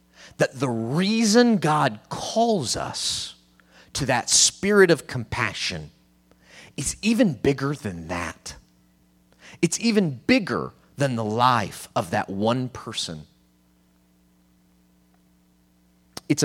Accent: American